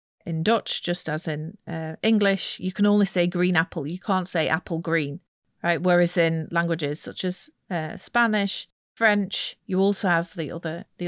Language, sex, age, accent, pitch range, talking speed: English, female, 40-59, British, 165-190 Hz, 175 wpm